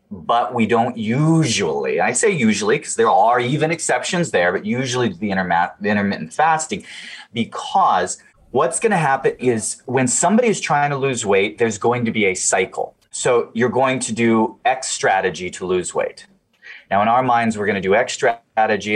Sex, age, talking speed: male, 30-49, 185 wpm